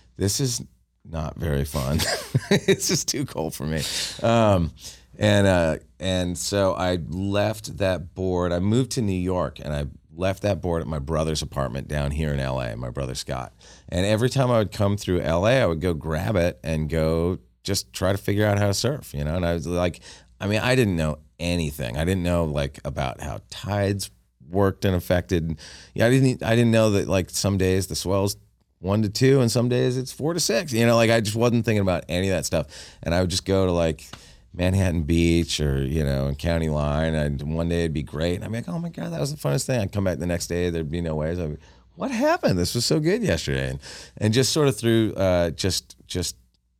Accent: American